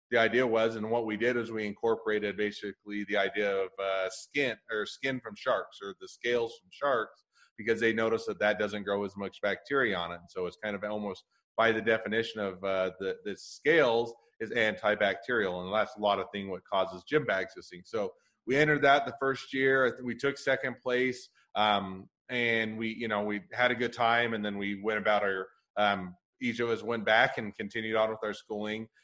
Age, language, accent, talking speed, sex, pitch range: 30-49, English, American, 215 wpm, male, 105-125 Hz